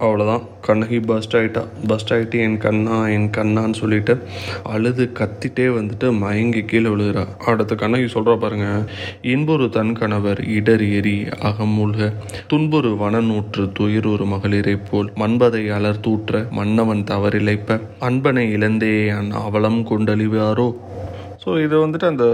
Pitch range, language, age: 105-125 Hz, Tamil, 20-39